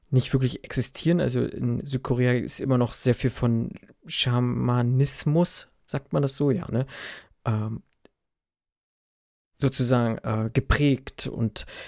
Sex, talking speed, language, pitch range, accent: male, 120 wpm, German, 115-135 Hz, German